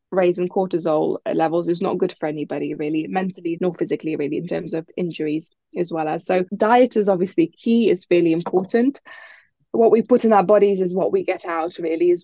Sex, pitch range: female, 175-200 Hz